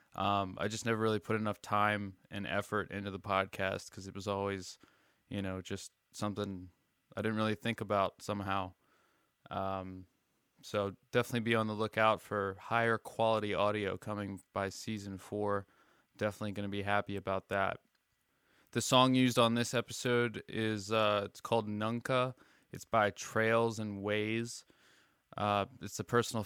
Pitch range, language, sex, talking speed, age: 100-115 Hz, English, male, 155 wpm, 20-39